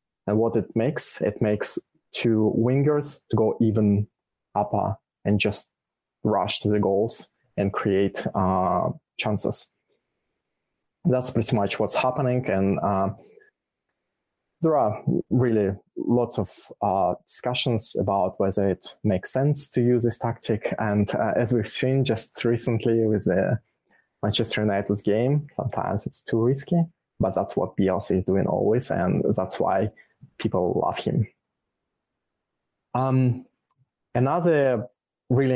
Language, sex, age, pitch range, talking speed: English, male, 20-39, 105-125 Hz, 130 wpm